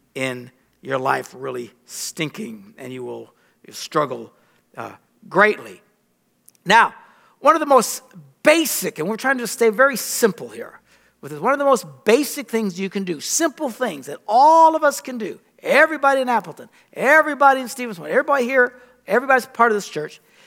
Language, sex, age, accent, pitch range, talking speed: English, male, 60-79, American, 180-260 Hz, 165 wpm